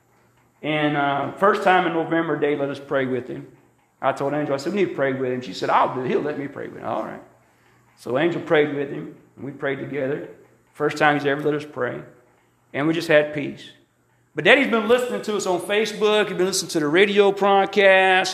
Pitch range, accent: 135-170 Hz, American